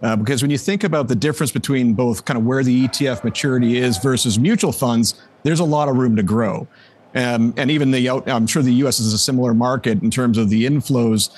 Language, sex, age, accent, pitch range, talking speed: English, male, 50-69, American, 115-140 Hz, 230 wpm